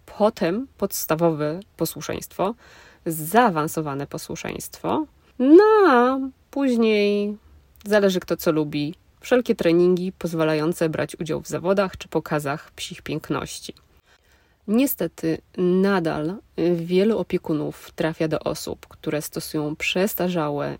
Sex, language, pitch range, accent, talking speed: female, Polish, 155-190 Hz, native, 95 wpm